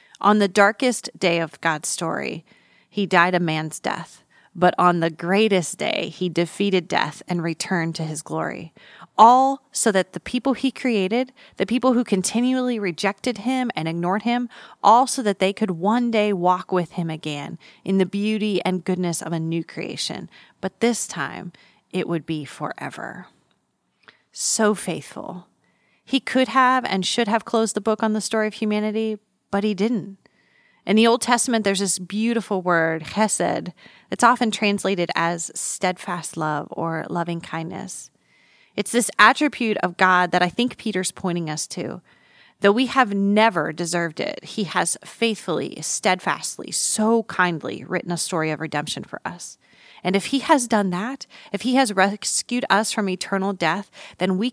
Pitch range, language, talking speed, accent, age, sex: 175-225 Hz, English, 165 wpm, American, 30-49, female